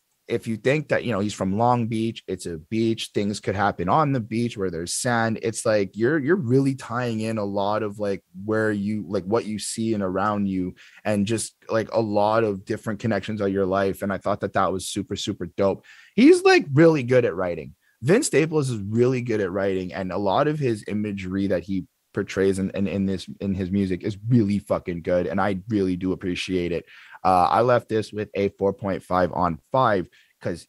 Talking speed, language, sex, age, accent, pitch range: 215 wpm, English, male, 20-39, American, 95-125 Hz